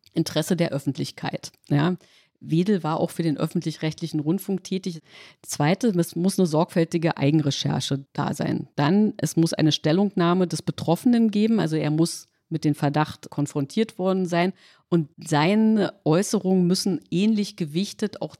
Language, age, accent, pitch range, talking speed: German, 50-69, German, 155-185 Hz, 140 wpm